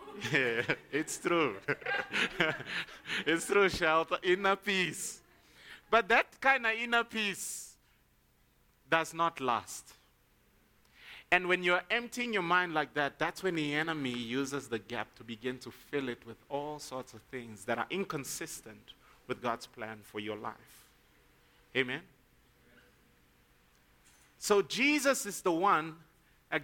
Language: English